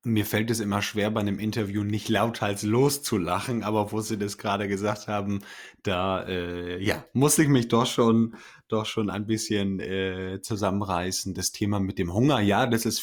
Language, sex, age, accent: German, male, 30-49, German